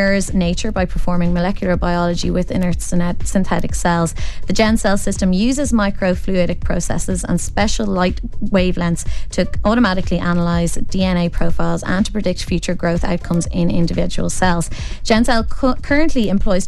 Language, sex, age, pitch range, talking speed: English, female, 20-39, 170-200 Hz, 135 wpm